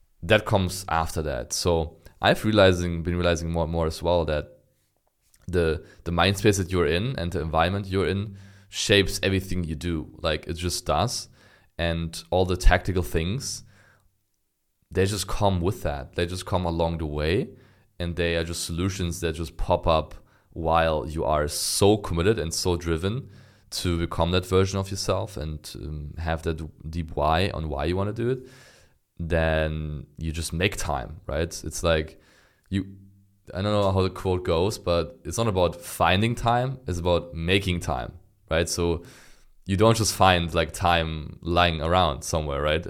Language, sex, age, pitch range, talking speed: English, male, 20-39, 80-95 Hz, 175 wpm